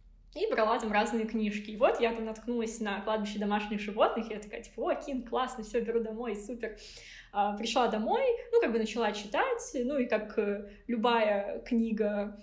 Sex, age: female, 20-39